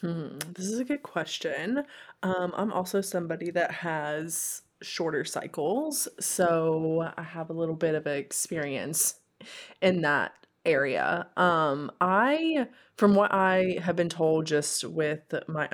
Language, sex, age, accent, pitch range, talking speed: English, female, 20-39, American, 155-190 Hz, 135 wpm